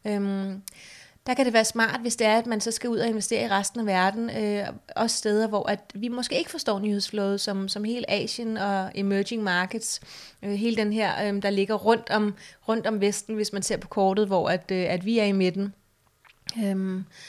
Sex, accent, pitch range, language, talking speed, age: female, native, 195-220 Hz, Danish, 220 wpm, 30-49